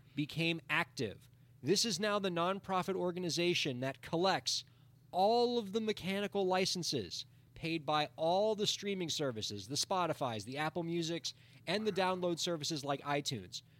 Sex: male